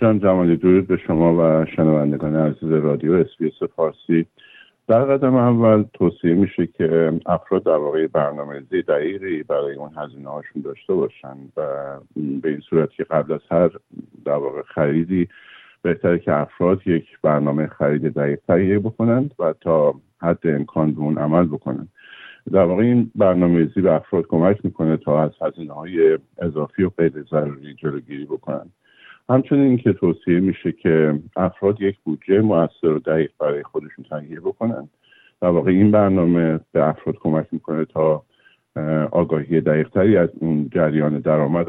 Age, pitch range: 50-69, 75-95 Hz